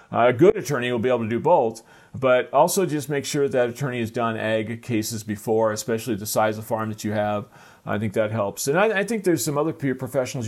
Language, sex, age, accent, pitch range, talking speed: English, male, 40-59, American, 110-135 Hz, 240 wpm